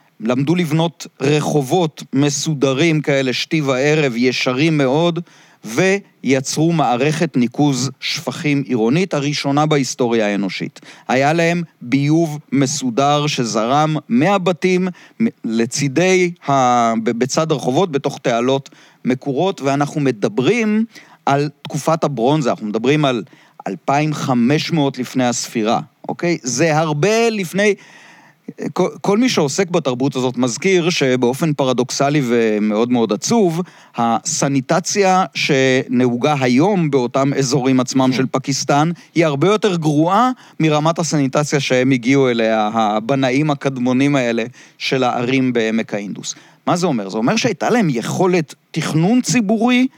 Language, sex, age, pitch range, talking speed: Hebrew, male, 40-59, 130-170 Hz, 110 wpm